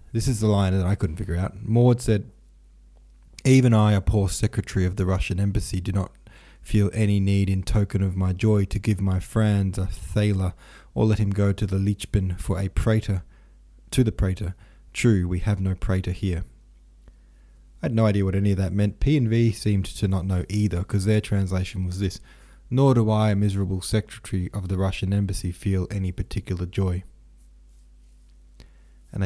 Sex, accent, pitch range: male, Australian, 90-110 Hz